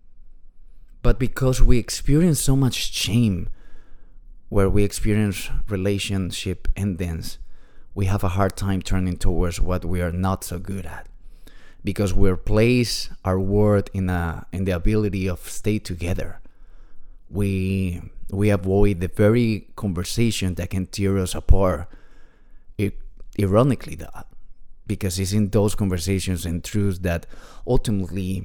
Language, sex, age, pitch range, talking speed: English, male, 20-39, 90-105 Hz, 130 wpm